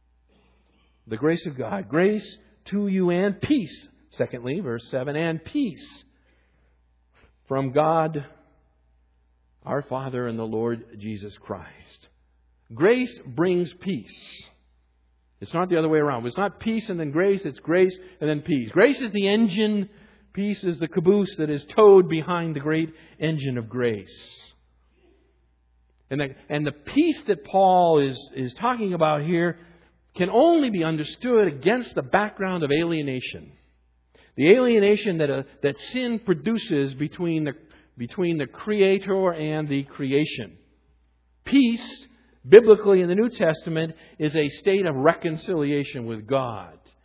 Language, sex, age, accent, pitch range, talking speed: English, male, 50-69, American, 120-195 Hz, 135 wpm